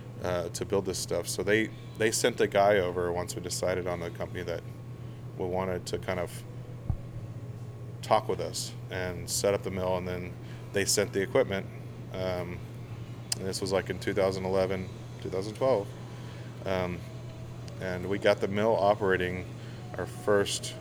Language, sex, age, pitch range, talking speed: English, male, 20-39, 95-120 Hz, 160 wpm